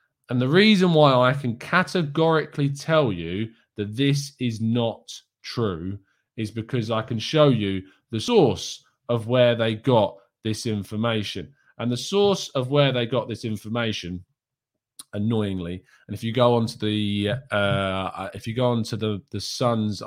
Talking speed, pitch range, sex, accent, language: 155 wpm, 105-140 Hz, male, British, English